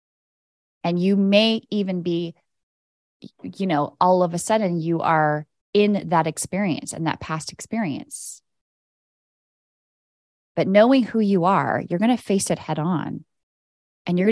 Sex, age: female, 20-39